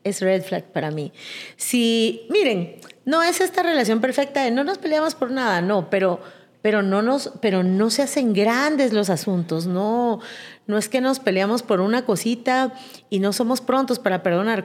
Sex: female